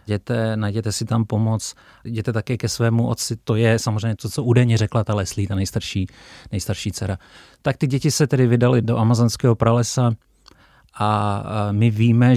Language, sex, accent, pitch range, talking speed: Czech, male, native, 105-115 Hz, 170 wpm